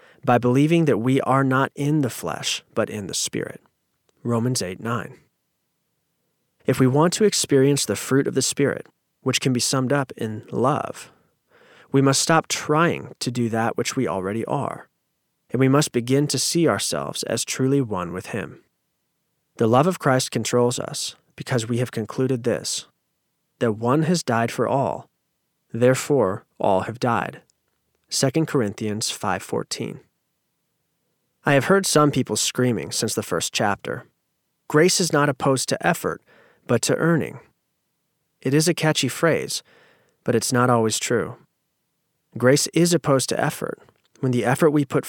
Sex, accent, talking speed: male, American, 160 wpm